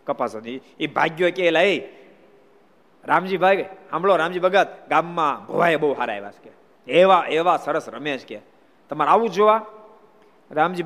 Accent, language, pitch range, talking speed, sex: native, Gujarati, 125-175 Hz, 150 wpm, male